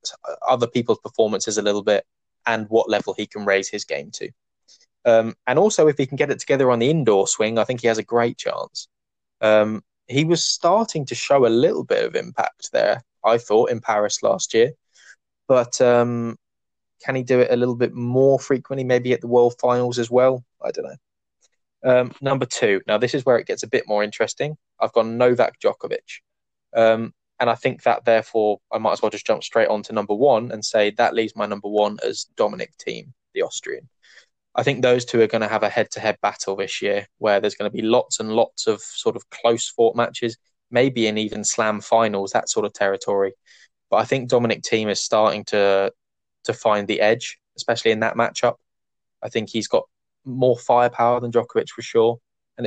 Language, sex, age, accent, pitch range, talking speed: English, male, 20-39, British, 110-125 Hz, 205 wpm